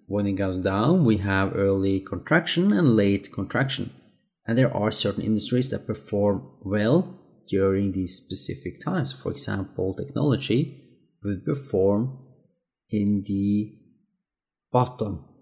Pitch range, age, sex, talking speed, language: 105-140 Hz, 30-49, male, 120 wpm, English